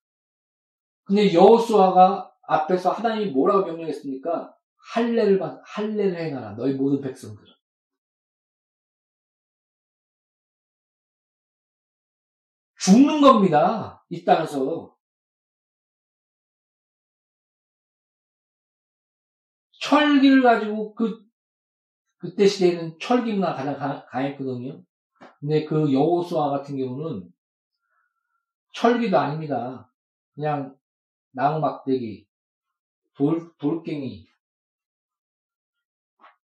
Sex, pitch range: male, 140-215 Hz